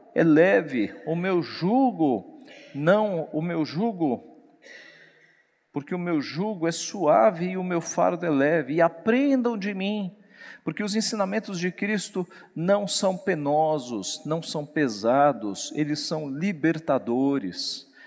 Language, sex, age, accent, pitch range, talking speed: Portuguese, male, 50-69, Brazilian, 140-185 Hz, 130 wpm